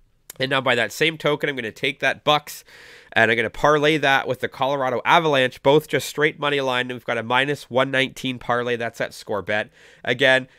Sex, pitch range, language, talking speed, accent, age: male, 120-150 Hz, English, 220 wpm, American, 30-49